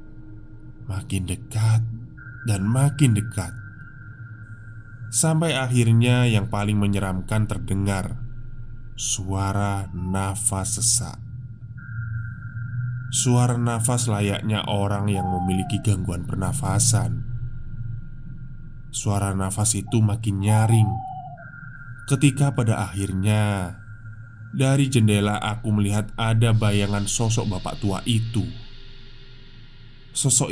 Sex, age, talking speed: male, 20-39, 80 wpm